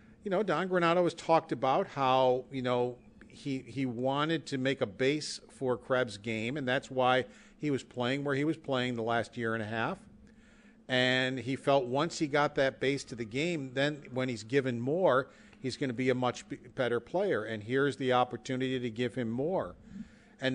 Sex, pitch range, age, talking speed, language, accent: male, 120-150 Hz, 50-69, 200 wpm, English, American